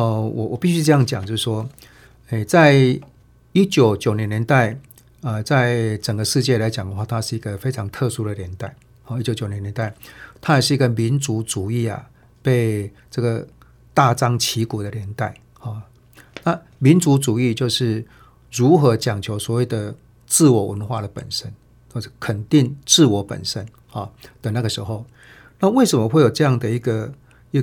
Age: 50-69